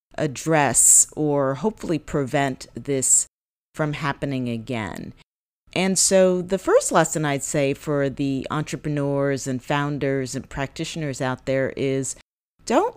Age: 40-59